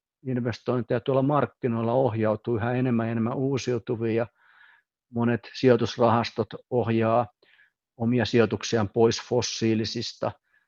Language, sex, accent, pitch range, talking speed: Finnish, male, native, 110-125 Hz, 85 wpm